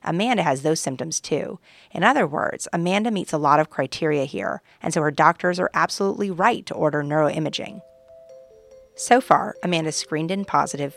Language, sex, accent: English, female, American